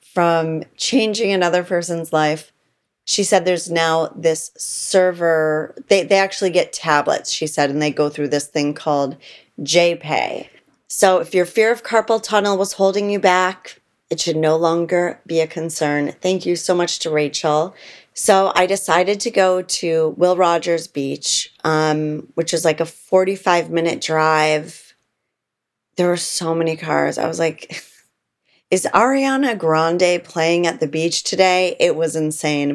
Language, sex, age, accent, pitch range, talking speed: English, female, 30-49, American, 155-185 Hz, 155 wpm